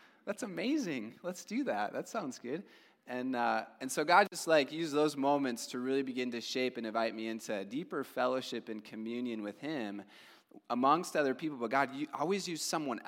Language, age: English, 20-39